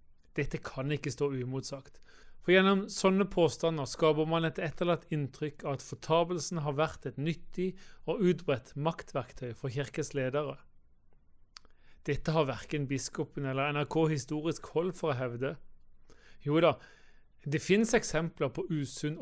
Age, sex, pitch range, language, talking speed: 40-59, male, 140-170 Hz, English, 135 wpm